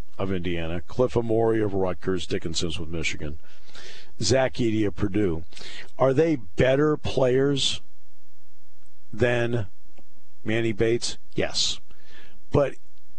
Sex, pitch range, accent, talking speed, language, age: male, 90-125 Hz, American, 100 wpm, English, 50-69